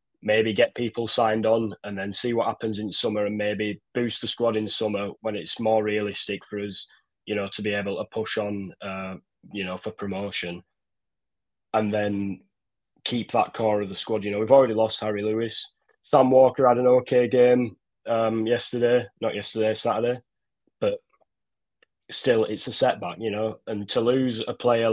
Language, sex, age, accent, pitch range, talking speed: English, male, 10-29, British, 100-120 Hz, 185 wpm